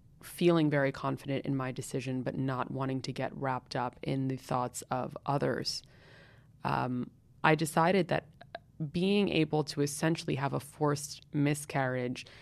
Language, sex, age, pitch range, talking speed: English, female, 20-39, 135-165 Hz, 145 wpm